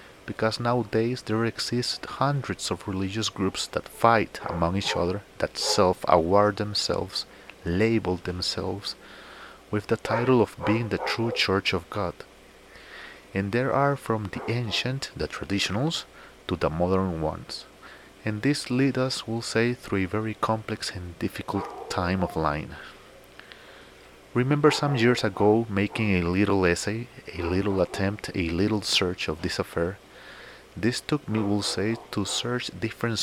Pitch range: 95-115 Hz